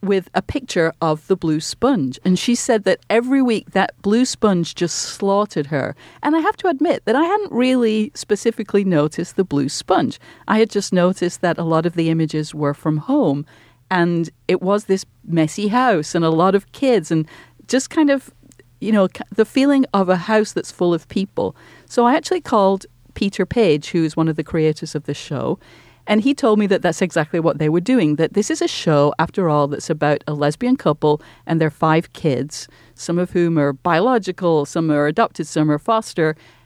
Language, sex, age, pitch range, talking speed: English, female, 40-59, 150-210 Hz, 205 wpm